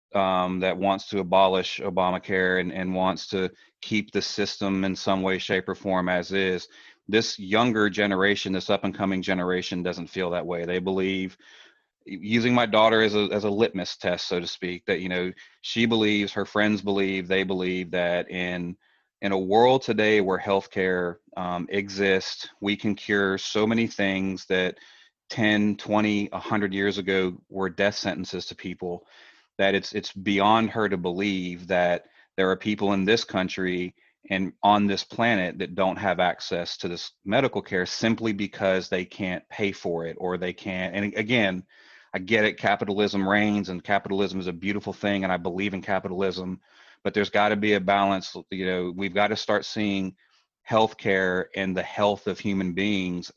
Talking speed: 180 wpm